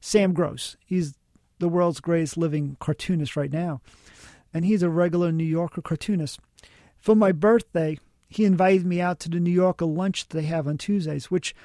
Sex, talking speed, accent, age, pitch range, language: male, 180 wpm, American, 40-59, 165-195 Hz, English